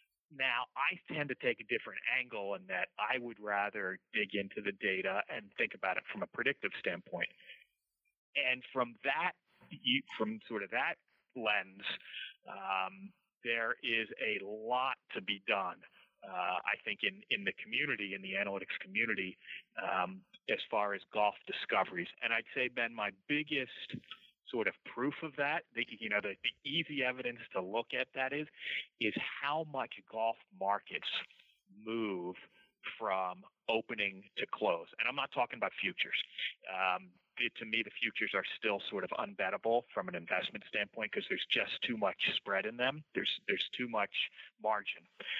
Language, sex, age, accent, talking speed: English, male, 30-49, American, 165 wpm